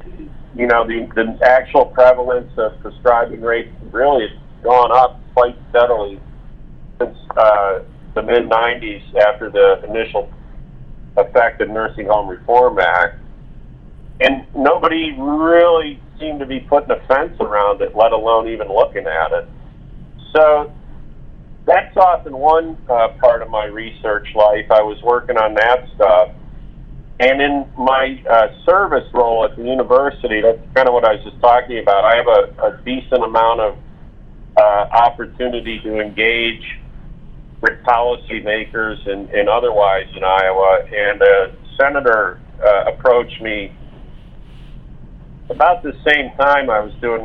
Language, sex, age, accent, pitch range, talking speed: English, male, 40-59, American, 110-145 Hz, 140 wpm